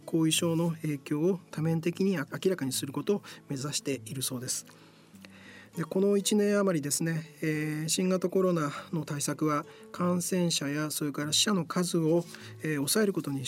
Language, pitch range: Japanese, 145-180 Hz